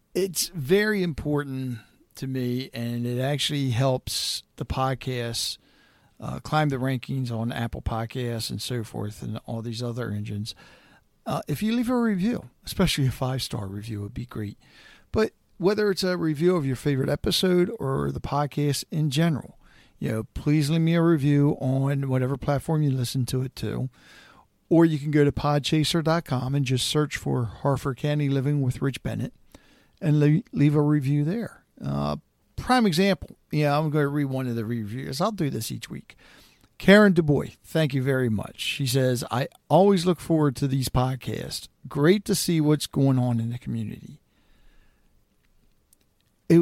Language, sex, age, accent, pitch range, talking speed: English, male, 50-69, American, 125-160 Hz, 170 wpm